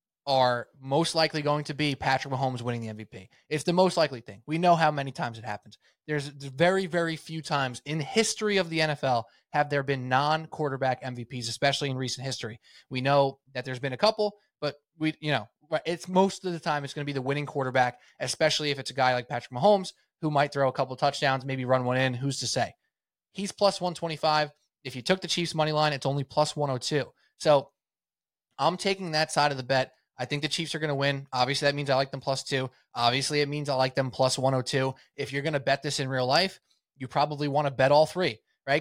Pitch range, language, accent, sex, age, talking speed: 135-165 Hz, English, American, male, 20-39, 240 wpm